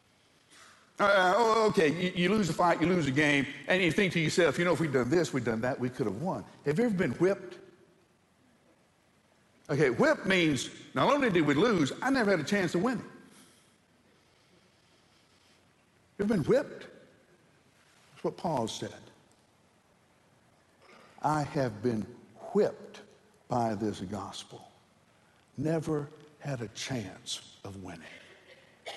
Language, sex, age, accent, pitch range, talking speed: English, male, 60-79, American, 120-185 Hz, 145 wpm